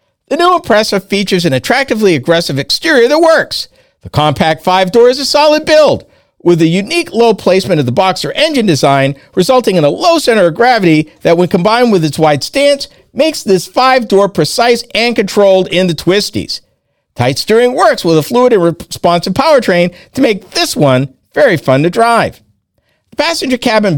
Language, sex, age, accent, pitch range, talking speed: English, male, 50-69, American, 155-245 Hz, 175 wpm